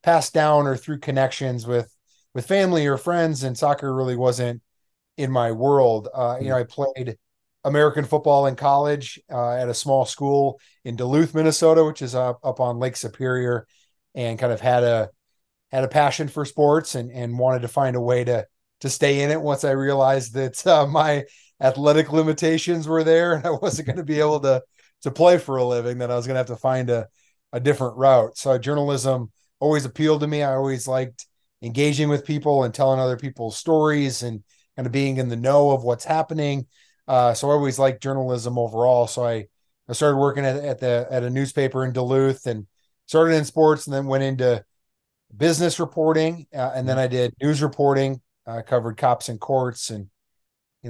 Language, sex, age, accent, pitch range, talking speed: Swedish, male, 30-49, American, 120-145 Hz, 200 wpm